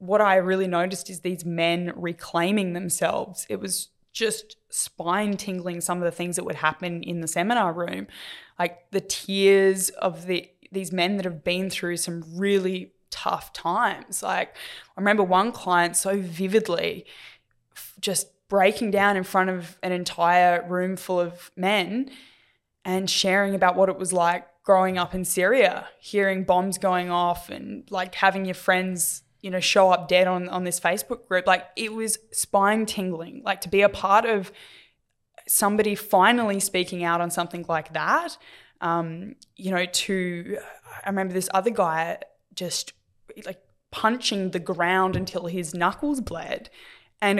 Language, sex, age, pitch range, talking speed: English, female, 10-29, 180-200 Hz, 160 wpm